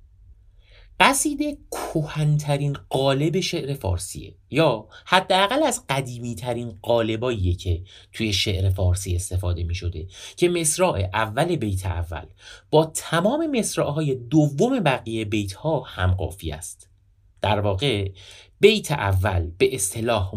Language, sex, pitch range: Persian, male, 95-155 Hz